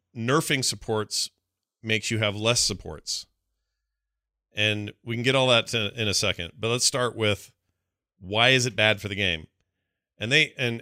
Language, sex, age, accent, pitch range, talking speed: English, male, 40-59, American, 95-120 Hz, 165 wpm